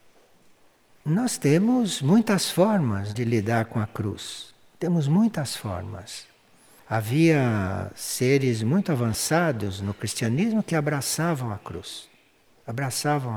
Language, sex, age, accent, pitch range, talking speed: Portuguese, male, 60-79, Brazilian, 115-170 Hz, 105 wpm